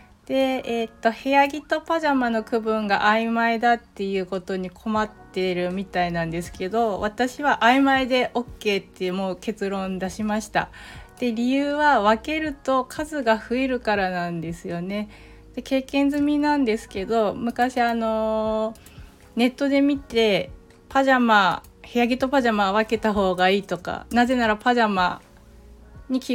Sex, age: female, 30-49